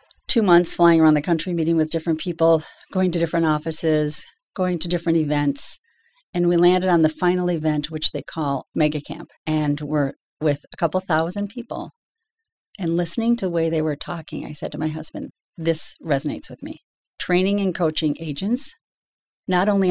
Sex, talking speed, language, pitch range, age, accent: female, 180 wpm, English, 160-200 Hz, 40-59, American